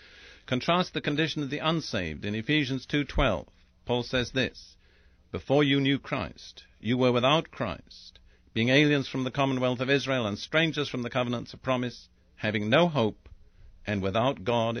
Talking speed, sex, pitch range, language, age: 160 wpm, male, 95-145 Hz, English, 50-69